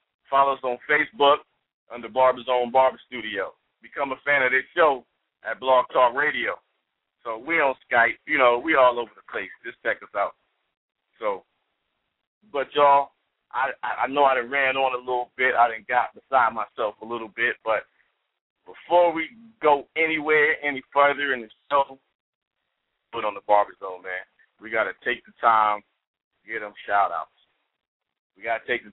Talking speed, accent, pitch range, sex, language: 175 wpm, American, 120-145 Hz, male, English